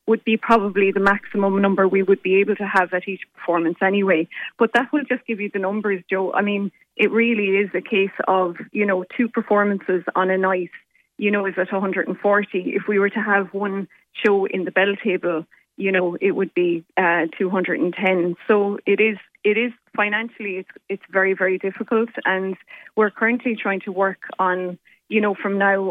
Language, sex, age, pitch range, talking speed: English, female, 20-39, 190-215 Hz, 195 wpm